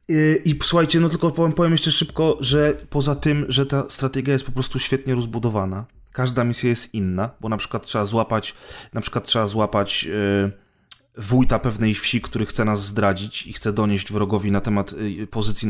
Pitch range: 110-125 Hz